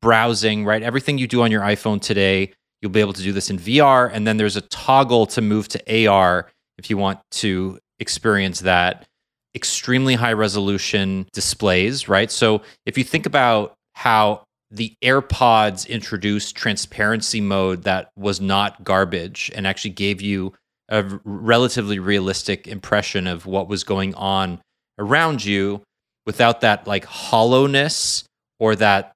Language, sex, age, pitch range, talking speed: English, male, 30-49, 95-115 Hz, 150 wpm